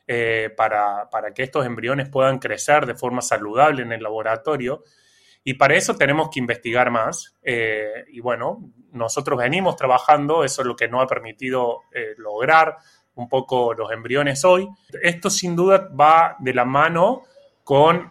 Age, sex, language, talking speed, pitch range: 20-39, male, Spanish, 160 wpm, 120-150 Hz